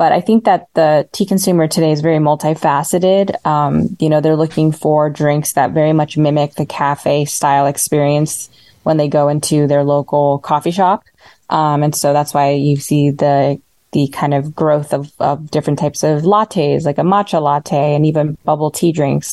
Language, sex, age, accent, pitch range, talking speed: English, female, 20-39, American, 145-165 Hz, 190 wpm